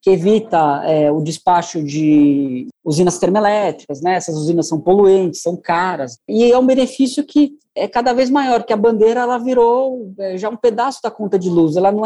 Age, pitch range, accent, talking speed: 20-39, 165-220 Hz, Brazilian, 185 wpm